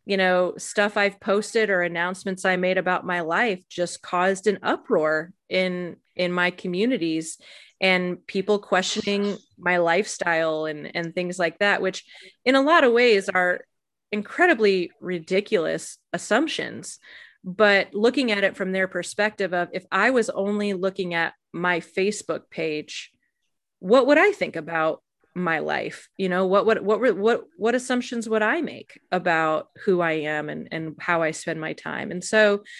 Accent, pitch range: American, 180-215 Hz